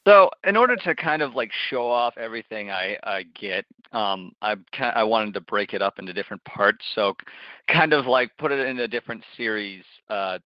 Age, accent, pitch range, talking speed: 30-49, American, 100-120 Hz, 210 wpm